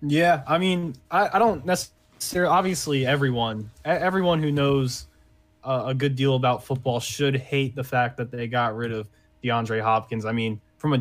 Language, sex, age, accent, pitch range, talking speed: English, male, 20-39, American, 115-135 Hz, 180 wpm